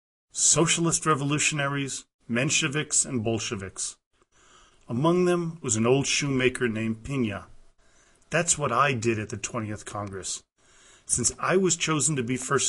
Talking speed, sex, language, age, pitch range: 130 wpm, male, English, 40-59, 115-145 Hz